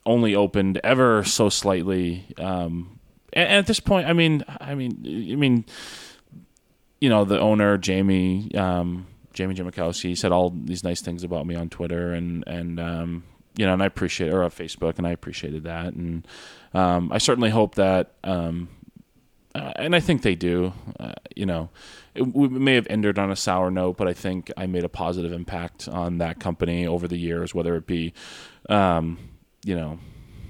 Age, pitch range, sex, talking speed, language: 20-39, 85-105 Hz, male, 185 wpm, English